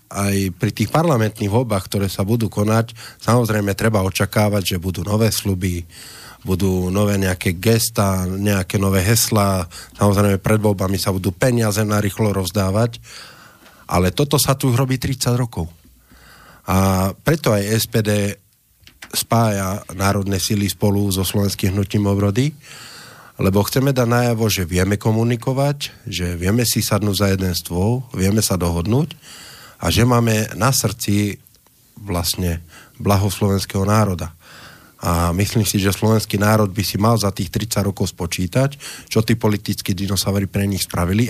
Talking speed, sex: 140 wpm, male